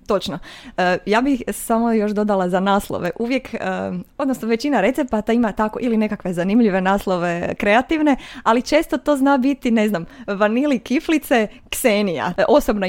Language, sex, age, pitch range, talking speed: Croatian, female, 20-39, 185-250 Hz, 140 wpm